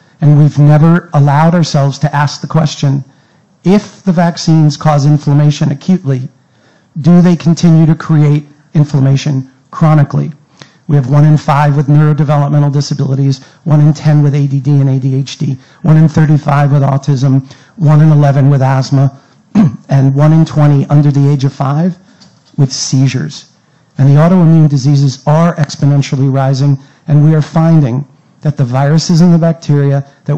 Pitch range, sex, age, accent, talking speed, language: 140-160 Hz, male, 50-69, American, 150 wpm, English